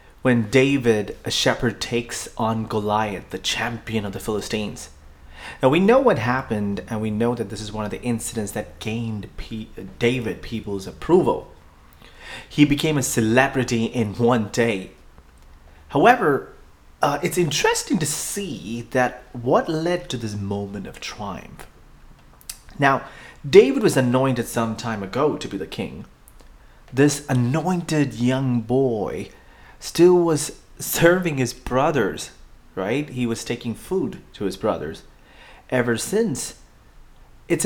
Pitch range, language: 100-130 Hz, English